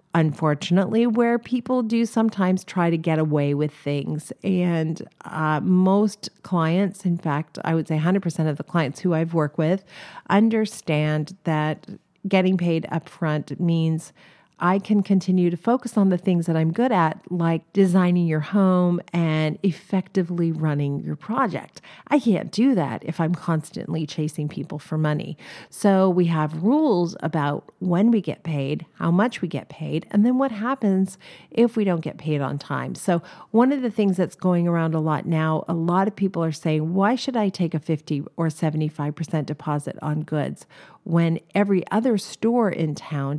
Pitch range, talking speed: 155-195 Hz, 175 wpm